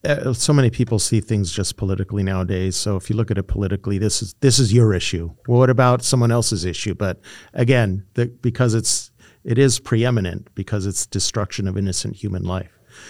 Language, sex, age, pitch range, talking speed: English, male, 50-69, 100-120 Hz, 195 wpm